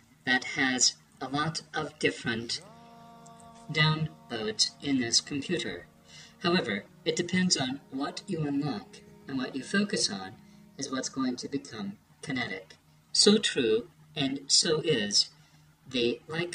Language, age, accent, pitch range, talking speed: English, 40-59, American, 135-175 Hz, 125 wpm